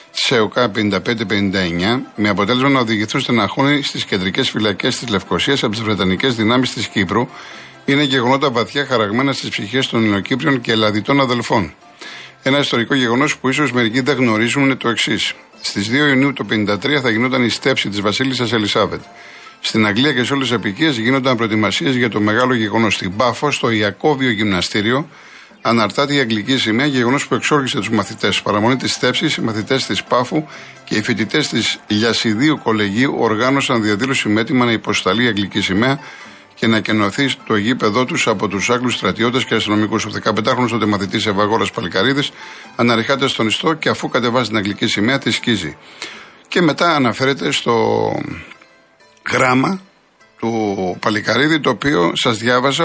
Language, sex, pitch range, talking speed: Greek, male, 110-135 Hz, 165 wpm